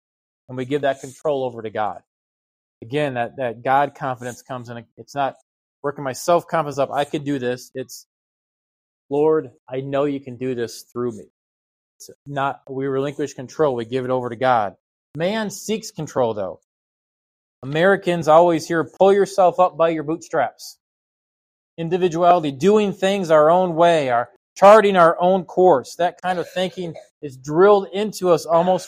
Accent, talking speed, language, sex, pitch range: American, 165 wpm, English, male, 125-165 Hz